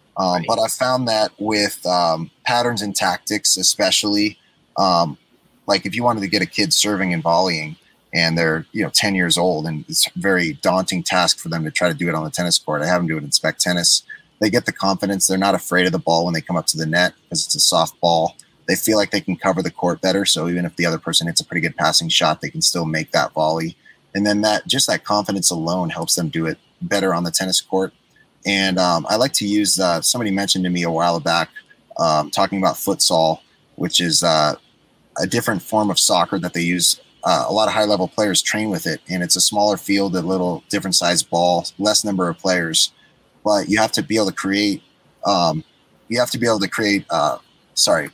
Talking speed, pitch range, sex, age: 240 wpm, 85-105 Hz, male, 30-49